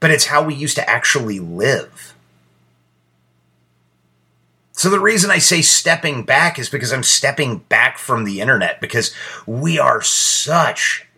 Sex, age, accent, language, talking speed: male, 30-49, American, English, 145 wpm